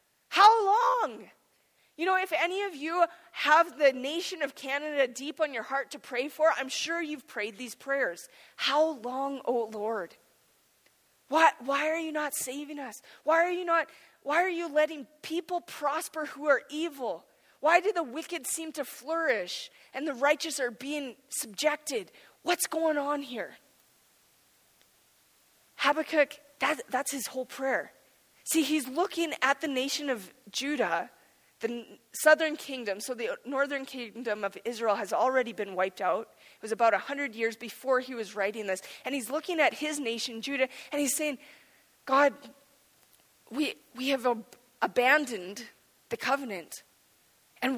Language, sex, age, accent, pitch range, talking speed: English, female, 20-39, American, 245-310 Hz, 150 wpm